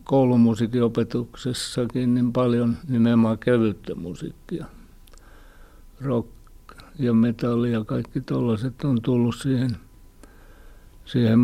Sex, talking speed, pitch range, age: male, 90 wpm, 110-125 Hz, 60-79